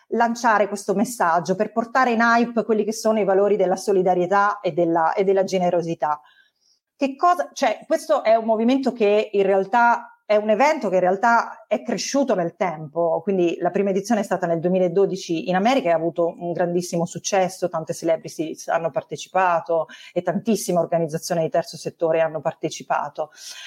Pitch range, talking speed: 175-235 Hz, 170 wpm